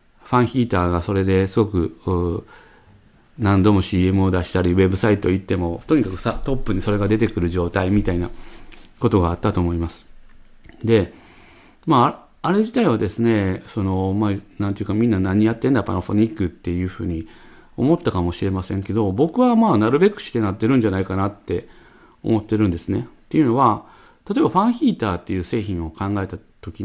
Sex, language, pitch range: male, Japanese, 95-120 Hz